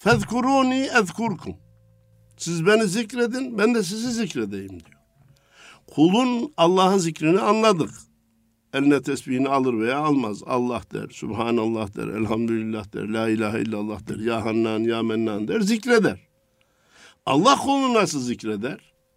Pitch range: 105-165 Hz